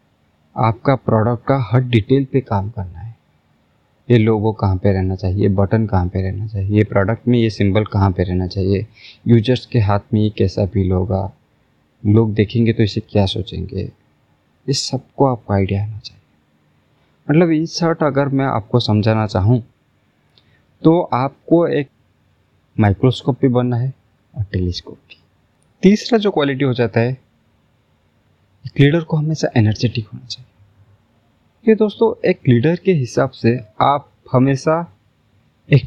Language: Hindi